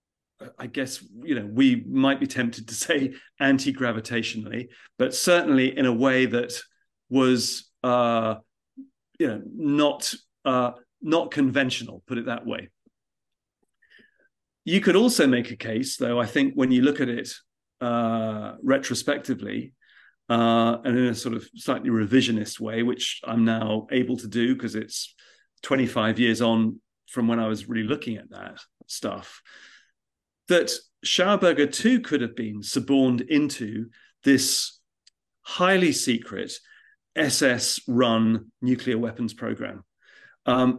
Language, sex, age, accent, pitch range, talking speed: English, male, 40-59, British, 115-135 Hz, 130 wpm